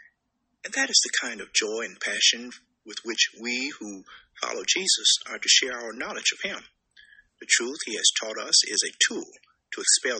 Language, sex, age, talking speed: English, male, 50-69, 195 wpm